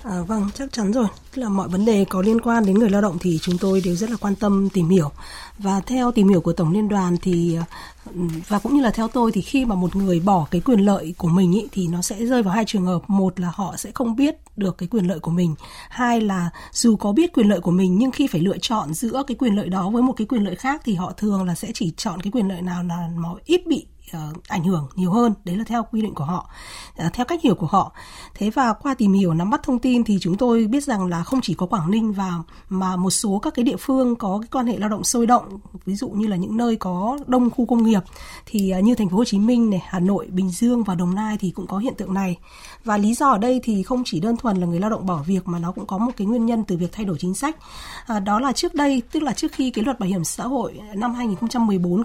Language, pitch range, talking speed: Vietnamese, 185-235 Hz, 280 wpm